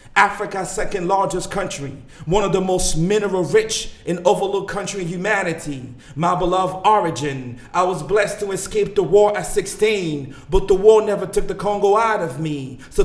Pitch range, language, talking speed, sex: 170-200 Hz, English, 165 wpm, male